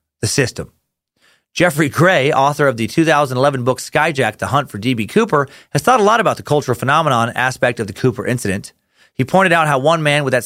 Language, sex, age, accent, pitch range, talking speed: English, male, 30-49, American, 125-175 Hz, 205 wpm